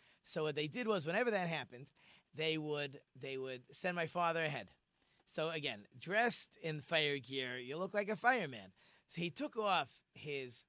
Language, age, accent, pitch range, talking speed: English, 30-49, American, 135-190 Hz, 180 wpm